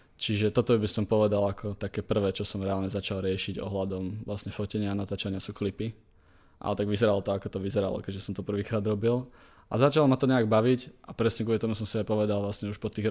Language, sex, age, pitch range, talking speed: Czech, male, 20-39, 105-120 Hz, 225 wpm